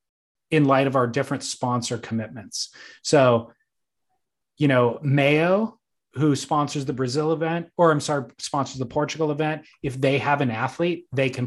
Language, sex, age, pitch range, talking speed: English, male, 20-39, 125-155 Hz, 155 wpm